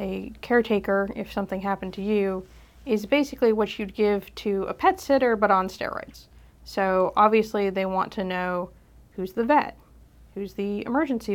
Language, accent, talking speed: English, American, 165 wpm